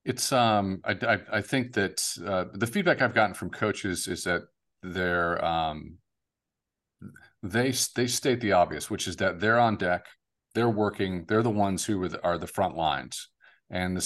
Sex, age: male, 40-59